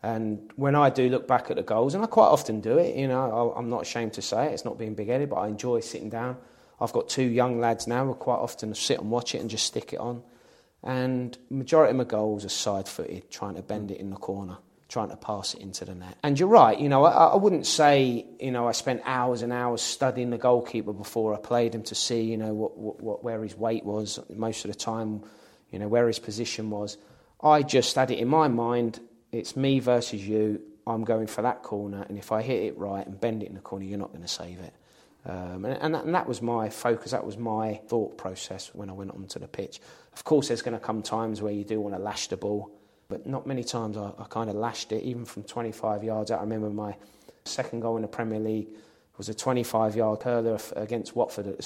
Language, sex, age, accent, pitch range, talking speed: English, male, 30-49, British, 105-120 Hz, 255 wpm